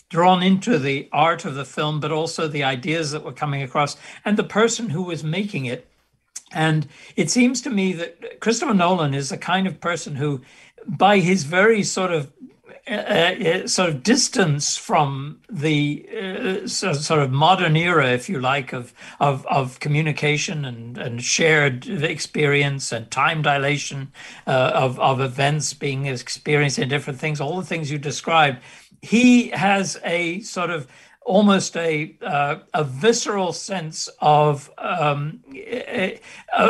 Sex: male